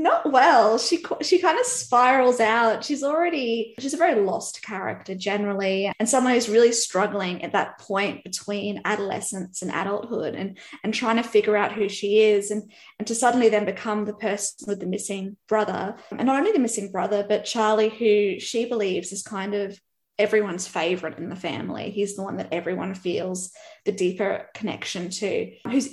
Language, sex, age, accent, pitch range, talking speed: English, female, 20-39, Australian, 200-225 Hz, 185 wpm